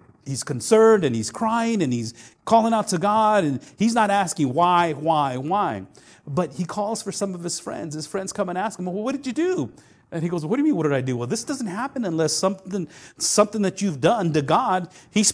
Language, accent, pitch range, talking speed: English, American, 150-220 Hz, 240 wpm